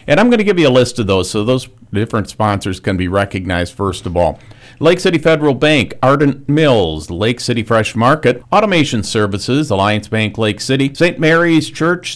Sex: male